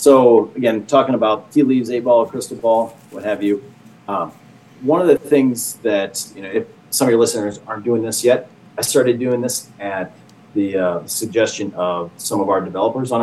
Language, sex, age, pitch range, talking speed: English, male, 40-59, 100-125 Hz, 205 wpm